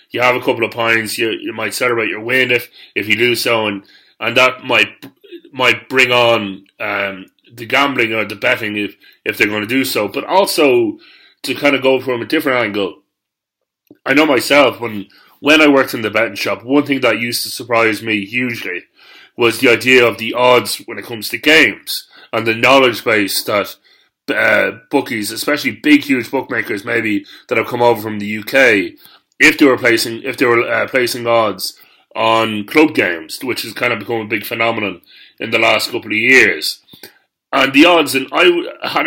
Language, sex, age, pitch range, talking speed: English, male, 30-49, 110-135 Hz, 200 wpm